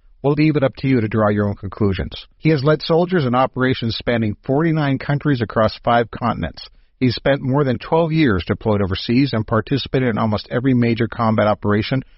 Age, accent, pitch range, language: 50-69, American, 105-130 Hz, English